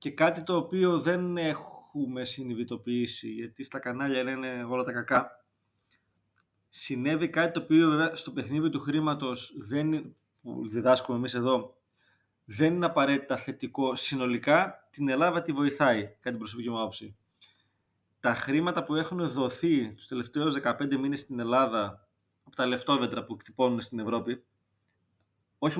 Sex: male